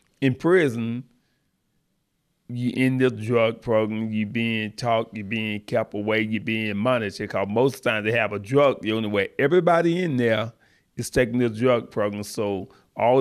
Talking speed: 175 wpm